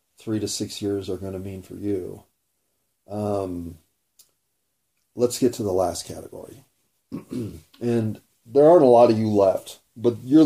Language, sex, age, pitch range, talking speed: English, male, 30-49, 100-120 Hz, 155 wpm